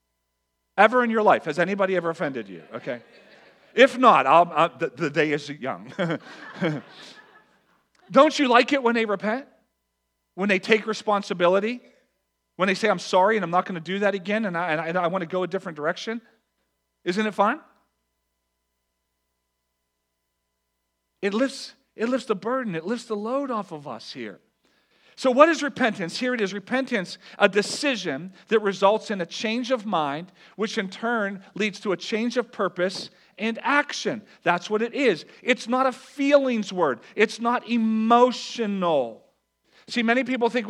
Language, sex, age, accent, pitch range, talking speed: English, male, 40-59, American, 175-235 Hz, 170 wpm